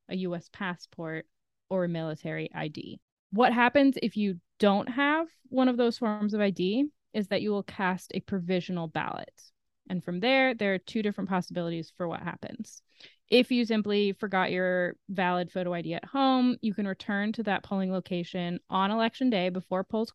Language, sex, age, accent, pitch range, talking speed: English, female, 20-39, American, 180-220 Hz, 180 wpm